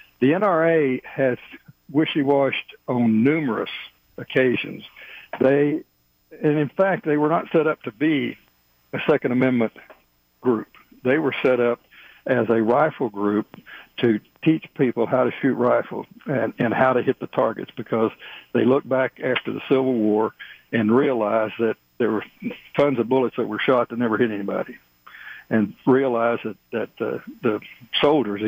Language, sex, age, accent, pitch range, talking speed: English, male, 60-79, American, 110-135 Hz, 155 wpm